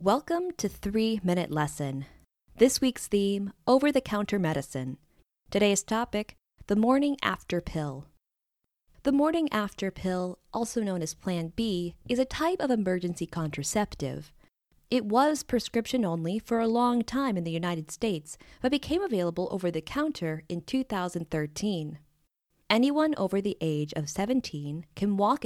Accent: American